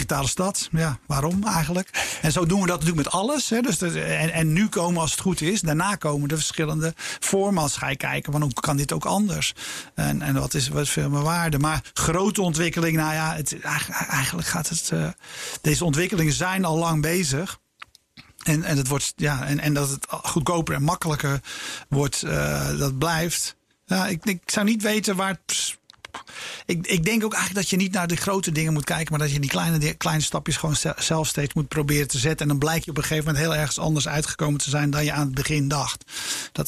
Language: Dutch